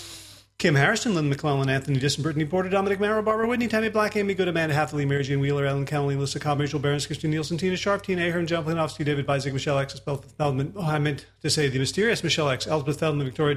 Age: 40-59